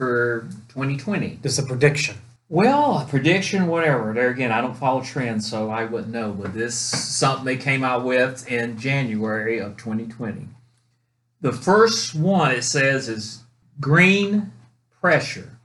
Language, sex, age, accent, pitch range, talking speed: English, male, 40-59, American, 120-150 Hz, 145 wpm